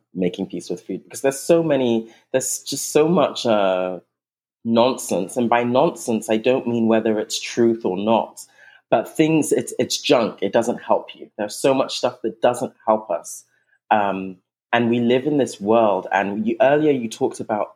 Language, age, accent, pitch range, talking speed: English, 30-49, British, 110-140 Hz, 185 wpm